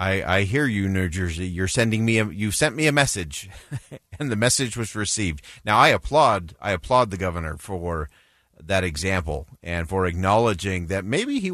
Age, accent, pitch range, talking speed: 40-59, American, 90-115 Hz, 185 wpm